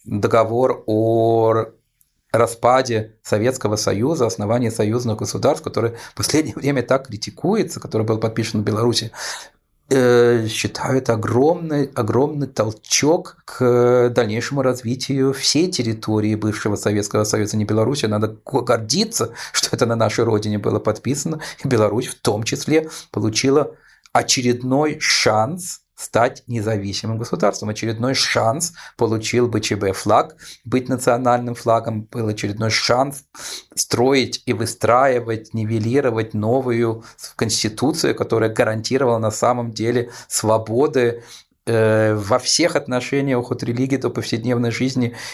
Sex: male